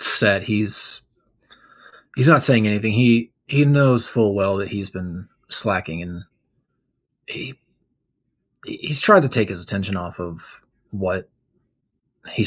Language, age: English, 20-39